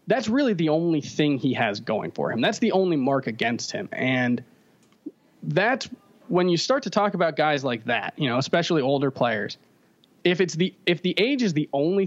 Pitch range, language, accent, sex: 140-190 Hz, English, American, male